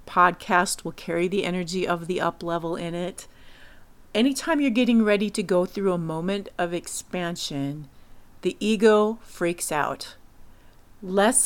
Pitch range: 170-215 Hz